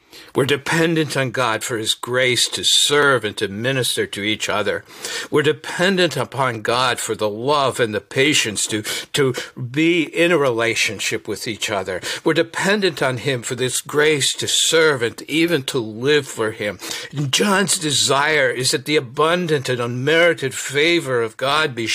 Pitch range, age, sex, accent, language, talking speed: 120-160 Hz, 60-79, male, American, English, 170 wpm